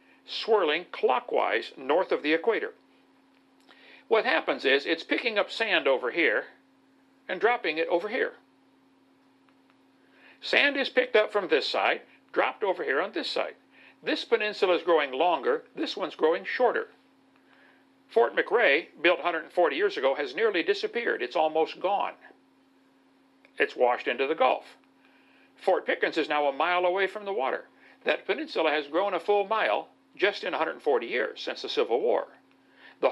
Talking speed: 155 wpm